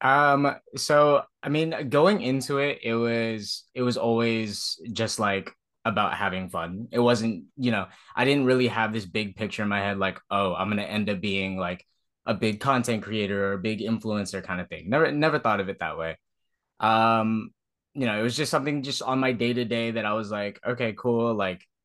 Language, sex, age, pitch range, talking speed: English, male, 20-39, 100-120 Hz, 205 wpm